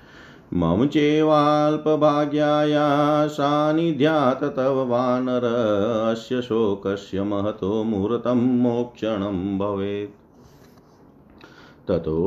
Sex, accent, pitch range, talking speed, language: male, native, 105-140 Hz, 60 wpm, Hindi